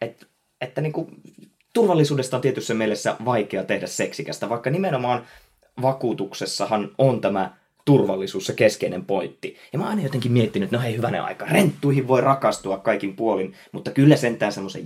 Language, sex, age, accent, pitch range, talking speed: Finnish, male, 20-39, native, 110-140 Hz, 160 wpm